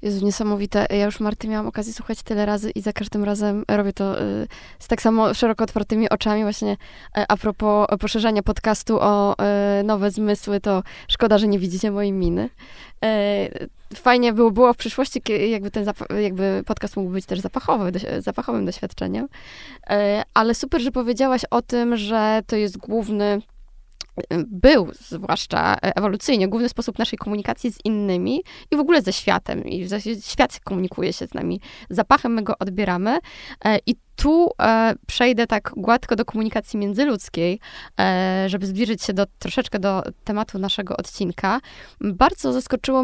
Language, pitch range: Polish, 205-230 Hz